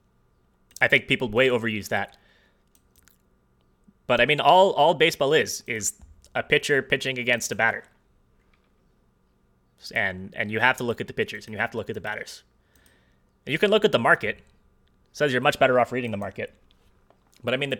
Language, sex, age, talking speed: English, male, 30-49, 190 wpm